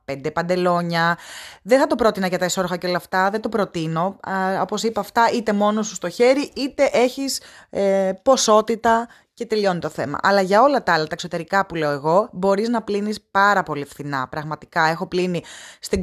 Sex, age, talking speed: female, 20-39, 190 wpm